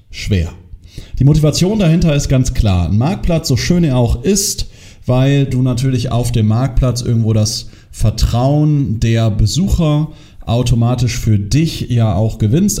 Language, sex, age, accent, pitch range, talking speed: German, male, 40-59, German, 115-145 Hz, 145 wpm